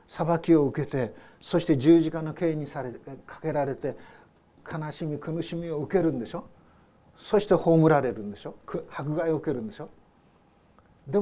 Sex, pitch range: male, 140-180 Hz